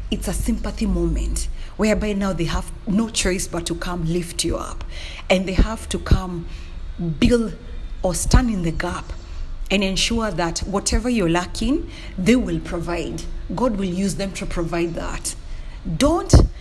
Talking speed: 160 wpm